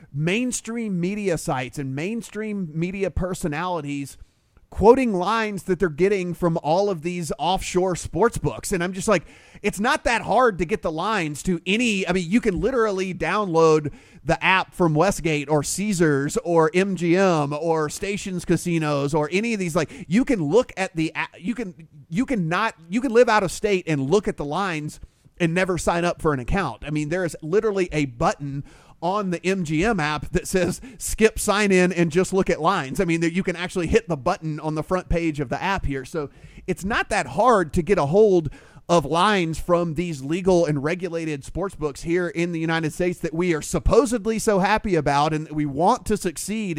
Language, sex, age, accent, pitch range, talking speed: English, male, 30-49, American, 160-205 Hz, 195 wpm